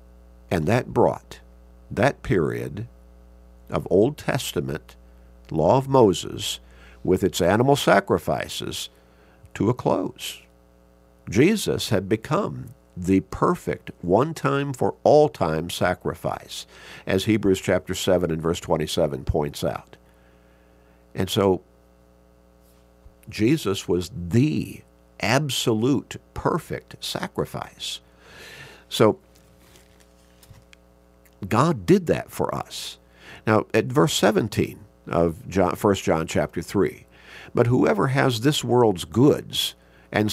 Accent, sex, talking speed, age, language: American, male, 95 wpm, 50-69, English